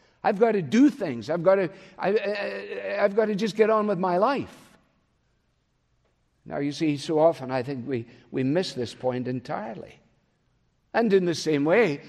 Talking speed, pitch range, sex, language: 185 wpm, 145-220 Hz, male, English